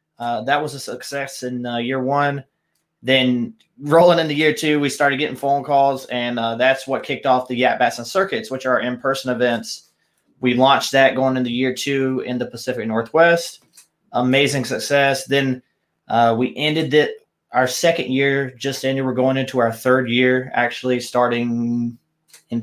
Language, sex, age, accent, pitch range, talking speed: English, male, 20-39, American, 120-135 Hz, 170 wpm